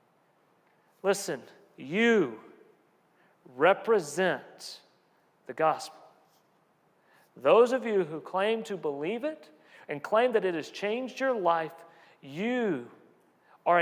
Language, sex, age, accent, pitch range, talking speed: English, male, 40-59, American, 150-215 Hz, 100 wpm